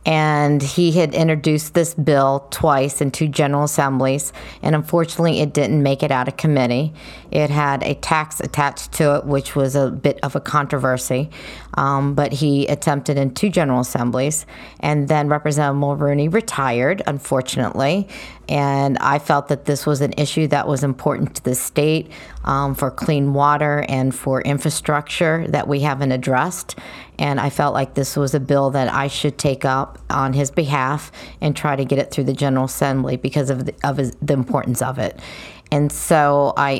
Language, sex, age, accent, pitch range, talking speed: English, female, 40-59, American, 135-150 Hz, 175 wpm